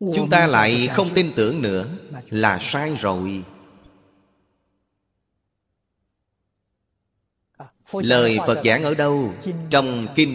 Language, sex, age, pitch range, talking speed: Vietnamese, male, 30-49, 100-125 Hz, 100 wpm